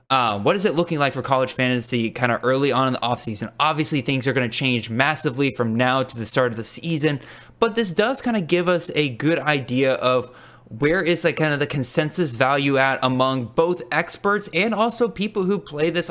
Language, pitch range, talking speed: English, 120-150 Hz, 225 wpm